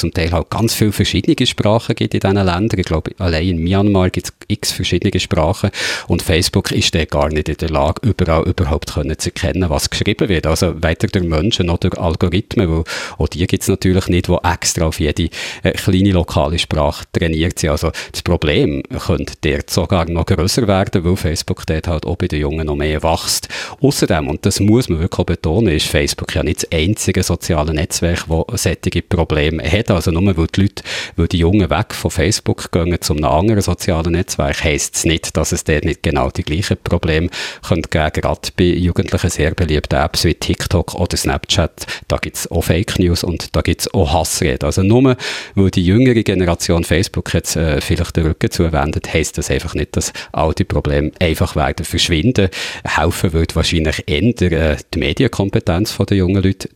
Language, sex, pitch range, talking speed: German, male, 80-100 Hz, 195 wpm